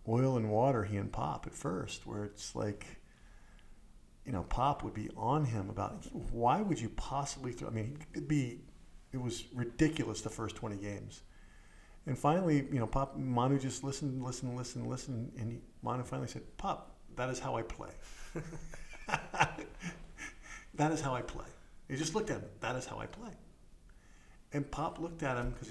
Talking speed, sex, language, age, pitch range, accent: 180 wpm, male, English, 50-69, 110-135 Hz, American